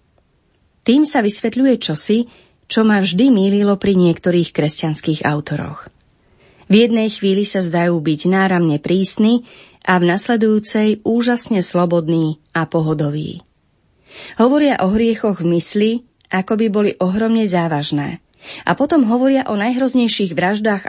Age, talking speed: 30-49, 125 wpm